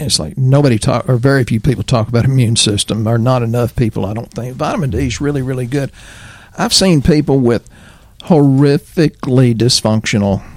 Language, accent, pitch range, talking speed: English, American, 110-135 Hz, 175 wpm